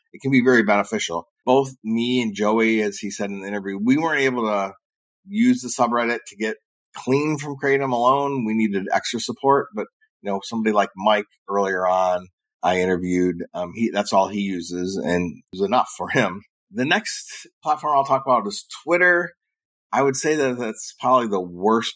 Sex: male